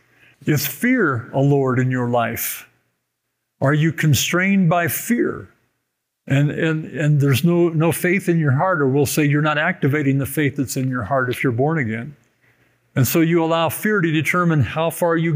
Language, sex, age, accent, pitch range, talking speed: English, male, 50-69, American, 135-160 Hz, 190 wpm